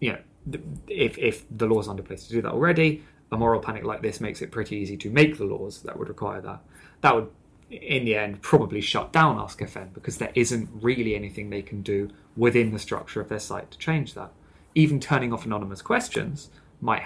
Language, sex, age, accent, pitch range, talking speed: English, male, 20-39, British, 105-135 Hz, 220 wpm